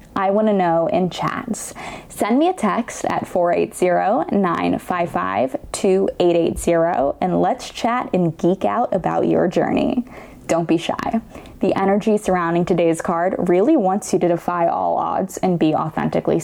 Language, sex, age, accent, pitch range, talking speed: English, female, 10-29, American, 180-240 Hz, 140 wpm